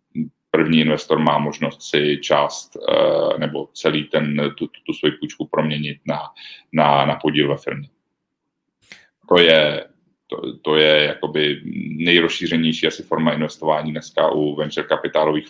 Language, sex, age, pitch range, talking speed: Czech, male, 40-59, 75-95 Hz, 130 wpm